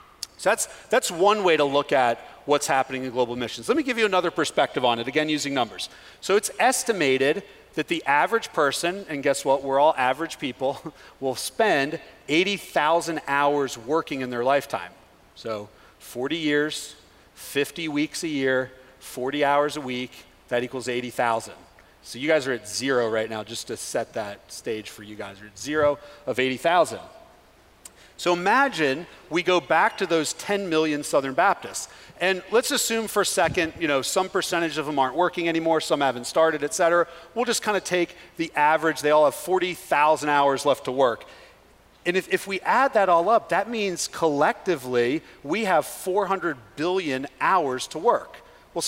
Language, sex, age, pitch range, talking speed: English, male, 40-59, 130-180 Hz, 180 wpm